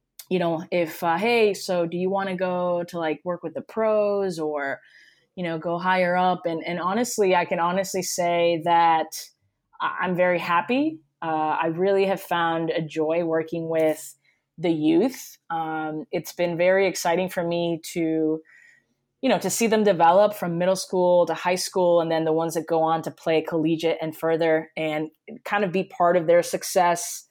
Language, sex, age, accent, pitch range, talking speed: English, female, 20-39, American, 160-185 Hz, 185 wpm